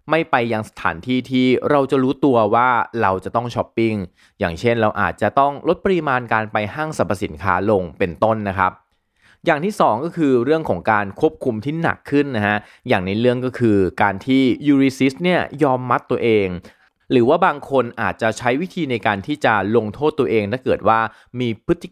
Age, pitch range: 20-39, 105-145 Hz